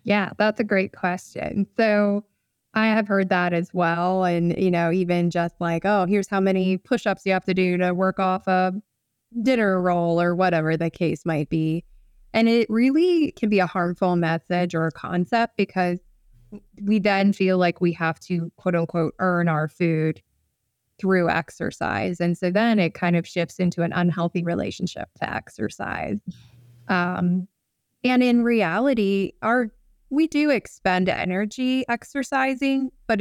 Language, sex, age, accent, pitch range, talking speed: English, female, 20-39, American, 175-205 Hz, 160 wpm